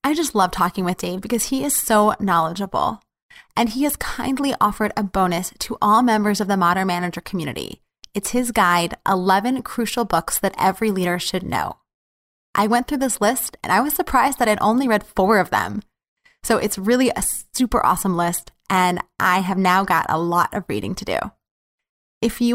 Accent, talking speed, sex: American, 195 wpm, female